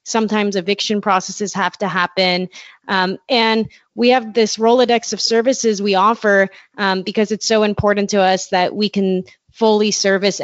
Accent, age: American, 30-49